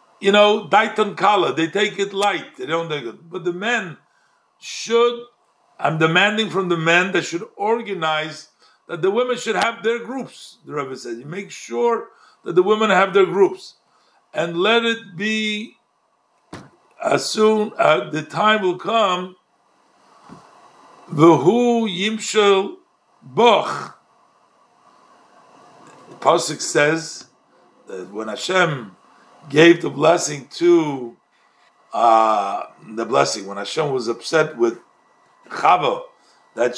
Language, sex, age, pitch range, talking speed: English, male, 60-79, 165-225 Hz, 120 wpm